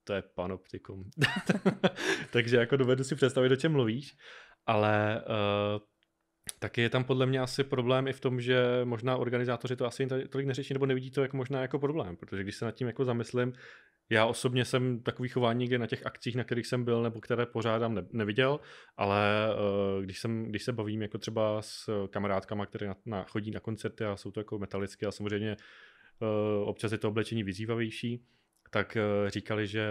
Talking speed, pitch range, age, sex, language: 190 wpm, 105-125 Hz, 20-39, male, Czech